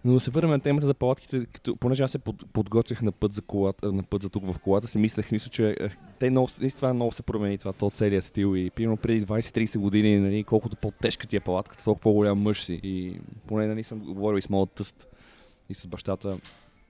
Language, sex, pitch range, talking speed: Bulgarian, male, 100-120 Hz, 220 wpm